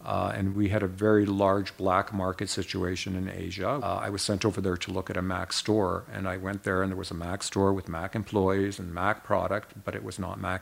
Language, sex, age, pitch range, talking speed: English, male, 50-69, 95-100 Hz, 255 wpm